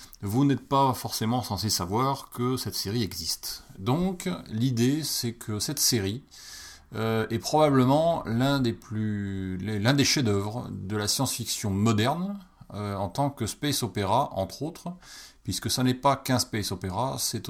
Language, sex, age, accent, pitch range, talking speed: French, male, 30-49, French, 100-130 Hz, 155 wpm